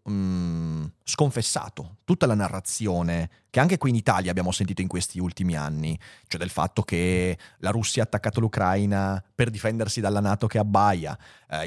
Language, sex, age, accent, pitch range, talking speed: Italian, male, 30-49, native, 100-130 Hz, 160 wpm